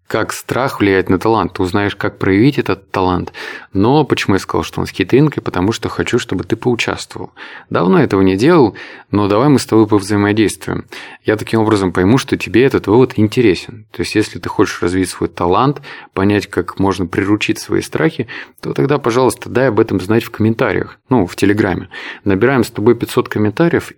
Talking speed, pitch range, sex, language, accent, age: 190 wpm, 95-125 Hz, male, Russian, native, 20-39